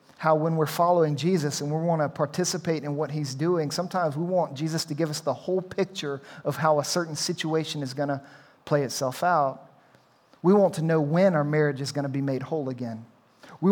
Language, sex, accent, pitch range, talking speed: English, male, American, 140-170 Hz, 220 wpm